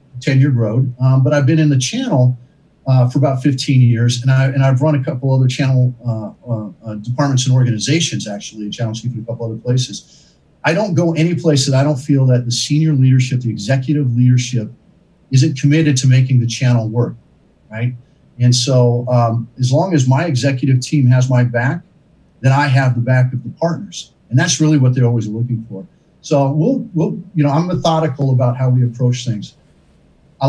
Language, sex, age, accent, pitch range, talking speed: English, male, 50-69, American, 120-140 Hz, 205 wpm